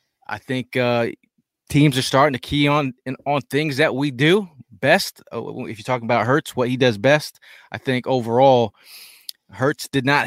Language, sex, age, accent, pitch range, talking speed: English, male, 20-39, American, 115-145 Hz, 180 wpm